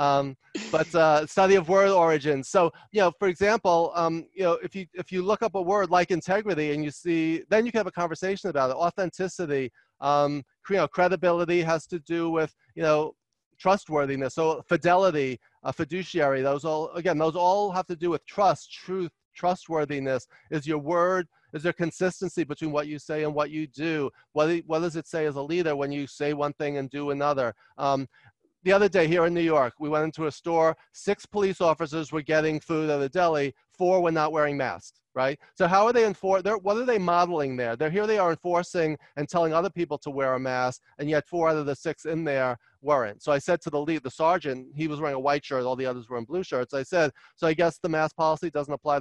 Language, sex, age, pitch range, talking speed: English, male, 30-49, 145-175 Hz, 230 wpm